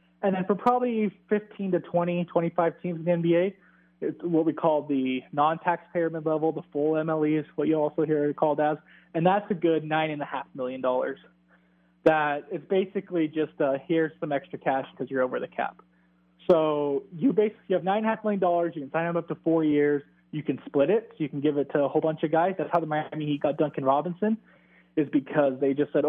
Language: English